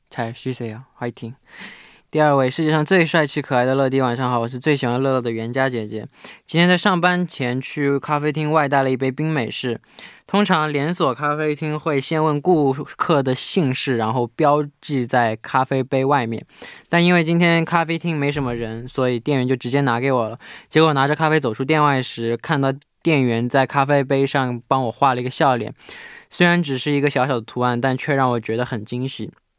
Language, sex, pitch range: Korean, male, 120-150 Hz